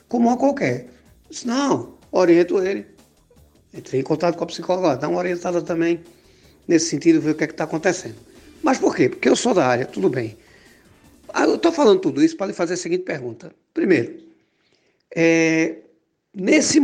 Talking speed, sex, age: 180 wpm, male, 60-79